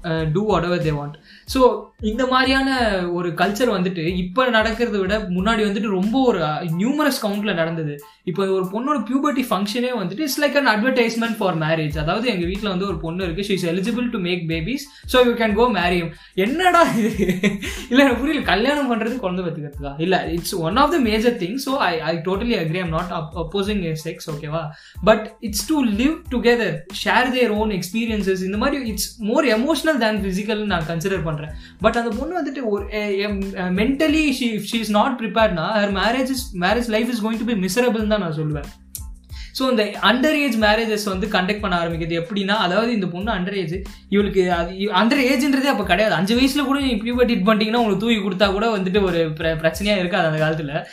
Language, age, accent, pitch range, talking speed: Tamil, 20-39, native, 175-235 Hz, 200 wpm